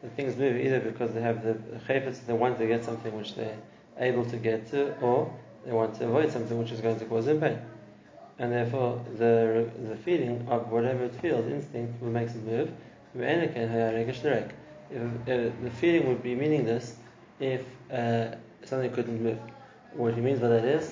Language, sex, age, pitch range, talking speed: English, male, 20-39, 115-125 Hz, 185 wpm